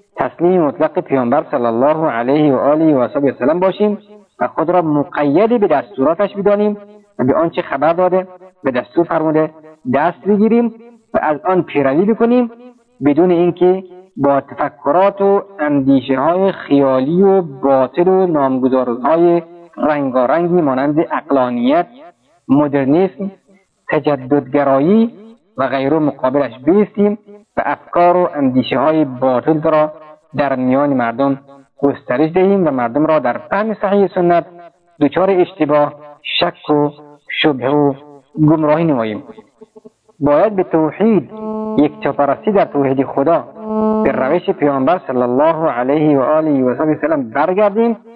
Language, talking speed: Persian, 125 wpm